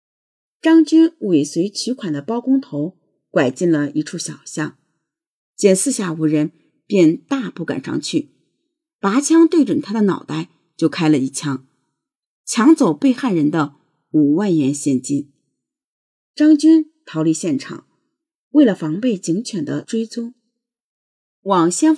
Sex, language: female, Chinese